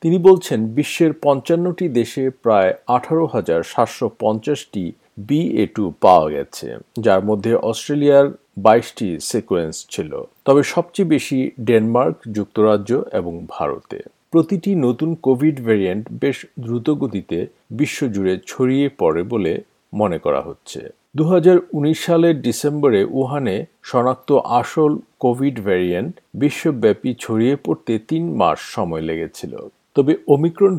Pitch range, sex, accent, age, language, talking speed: 110-155 Hz, male, native, 50-69, Bengali, 85 wpm